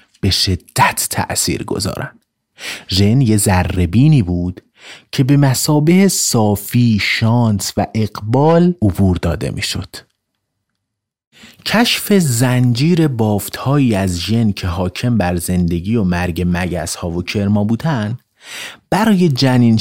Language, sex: Persian, male